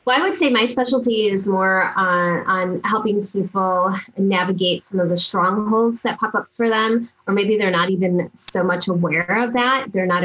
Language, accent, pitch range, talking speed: English, American, 170-195 Hz, 200 wpm